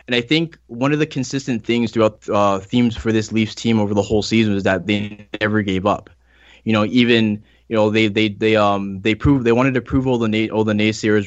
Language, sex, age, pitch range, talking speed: English, male, 20-39, 105-115 Hz, 245 wpm